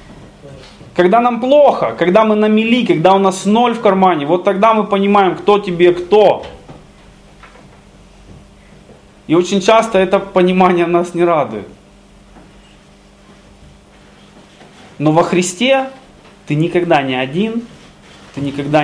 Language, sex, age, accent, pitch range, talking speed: Russian, male, 20-39, native, 160-200 Hz, 115 wpm